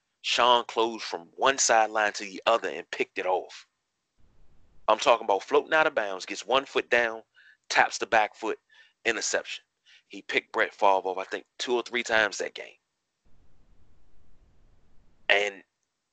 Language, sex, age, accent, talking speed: English, male, 30-49, American, 155 wpm